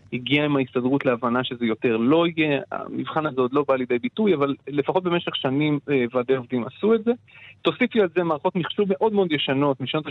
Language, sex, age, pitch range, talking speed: Hebrew, male, 30-49, 130-180 Hz, 195 wpm